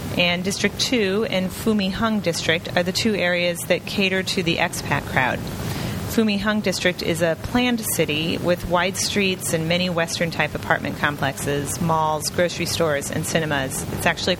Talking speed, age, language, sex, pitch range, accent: 155 wpm, 30-49, English, female, 150-190 Hz, American